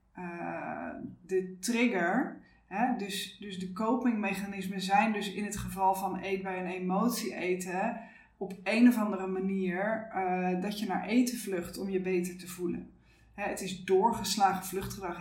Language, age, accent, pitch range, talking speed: Dutch, 20-39, Dutch, 185-230 Hz, 160 wpm